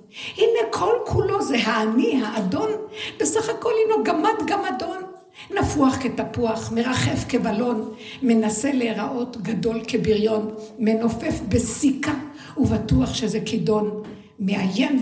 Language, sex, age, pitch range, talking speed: Hebrew, female, 60-79, 220-315 Hz, 95 wpm